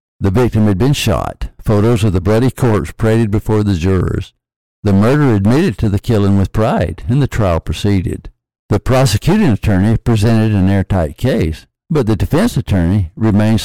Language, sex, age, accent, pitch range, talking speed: English, male, 60-79, American, 95-120 Hz, 165 wpm